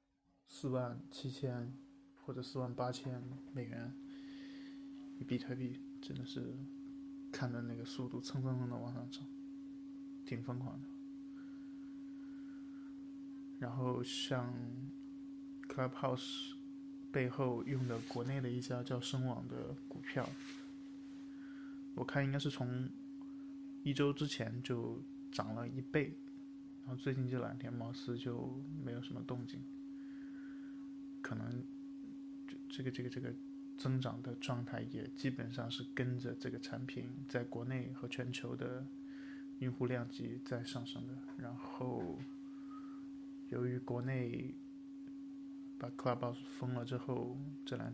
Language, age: Chinese, 20-39